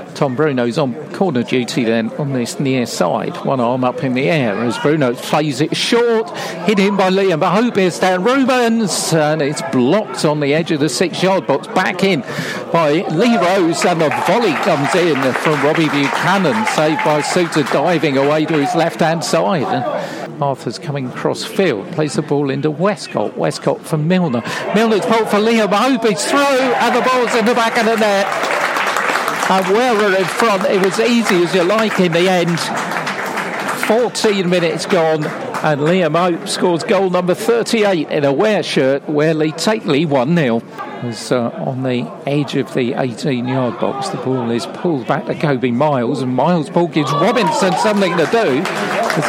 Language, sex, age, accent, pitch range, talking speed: English, male, 50-69, British, 150-200 Hz, 180 wpm